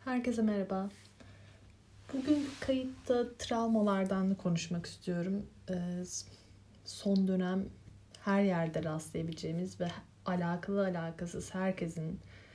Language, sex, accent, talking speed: Turkish, female, native, 75 wpm